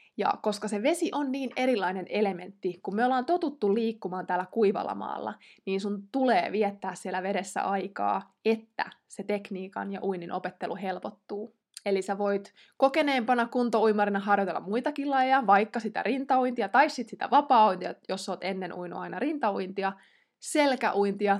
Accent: native